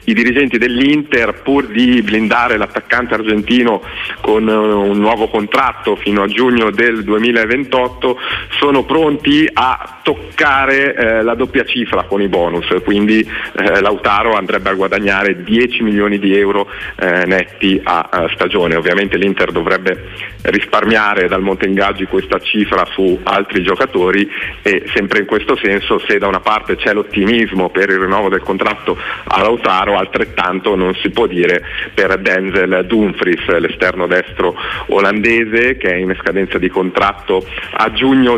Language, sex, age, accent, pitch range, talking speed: Italian, male, 40-59, native, 100-120 Hz, 145 wpm